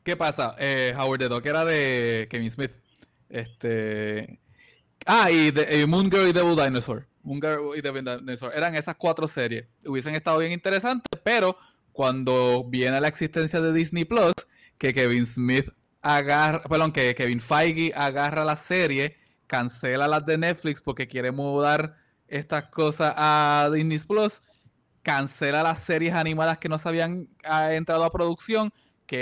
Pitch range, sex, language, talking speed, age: 135-165 Hz, male, English, 160 wpm, 20-39